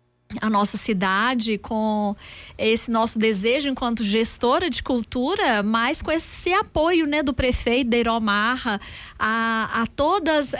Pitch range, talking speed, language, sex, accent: 215-270 Hz, 125 wpm, Portuguese, female, Brazilian